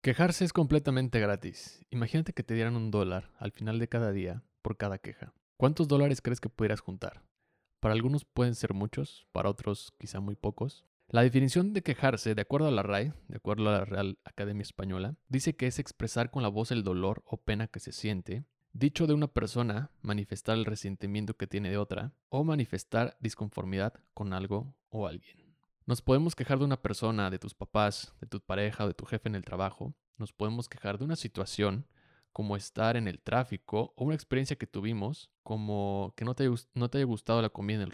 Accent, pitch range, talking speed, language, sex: Mexican, 100-130 Hz, 200 wpm, Spanish, male